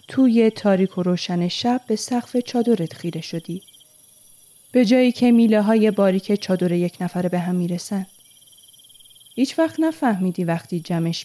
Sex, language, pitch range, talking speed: female, Persian, 165-205 Hz, 145 wpm